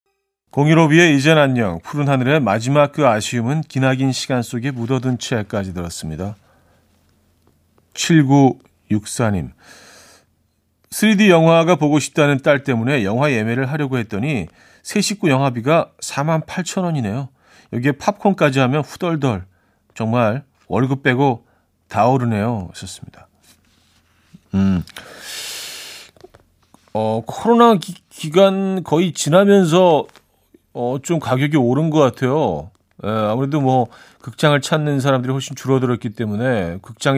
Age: 40-59